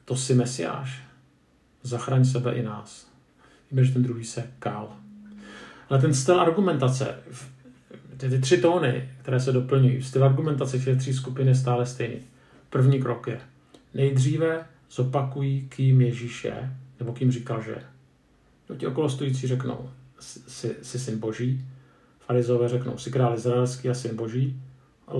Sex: male